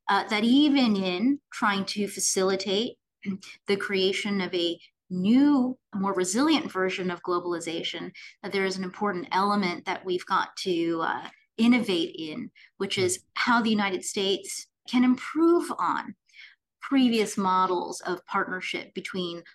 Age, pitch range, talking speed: 30-49, 190-250 Hz, 130 wpm